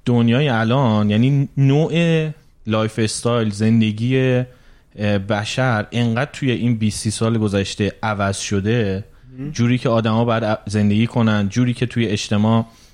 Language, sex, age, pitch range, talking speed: Persian, male, 30-49, 105-140 Hz, 120 wpm